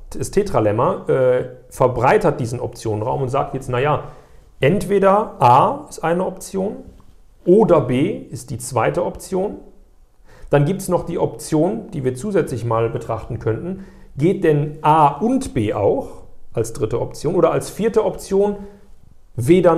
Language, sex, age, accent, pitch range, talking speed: German, male, 40-59, German, 125-175 Hz, 140 wpm